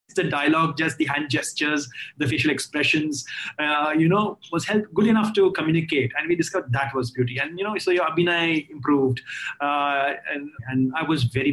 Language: English